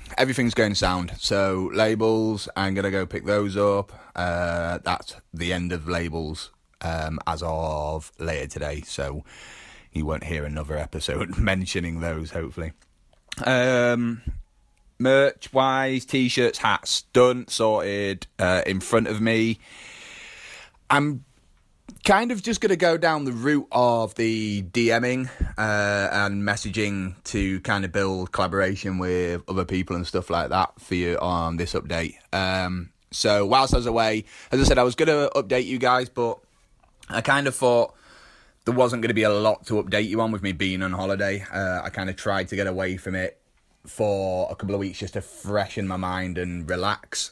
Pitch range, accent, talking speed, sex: 90-115 Hz, British, 170 wpm, male